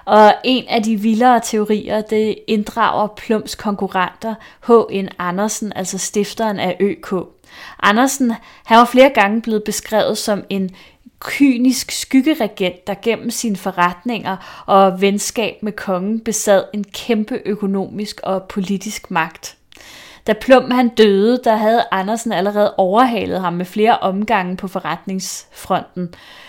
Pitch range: 190-225 Hz